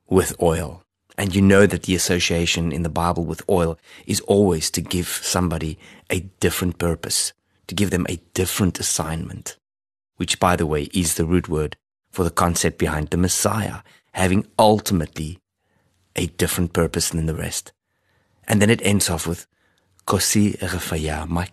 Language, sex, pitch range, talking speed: English, male, 85-95 Hz, 155 wpm